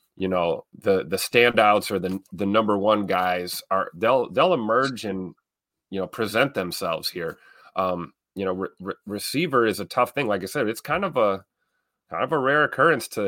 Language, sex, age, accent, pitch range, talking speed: English, male, 30-49, American, 90-110 Hz, 190 wpm